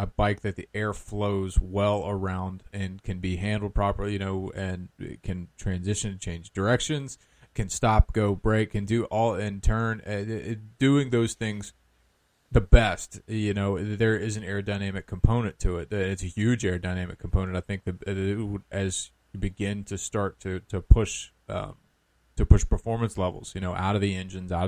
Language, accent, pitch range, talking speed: English, American, 95-105 Hz, 185 wpm